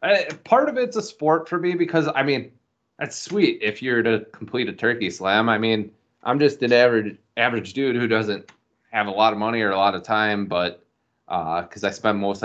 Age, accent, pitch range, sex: 20-39, American, 100-125 Hz, male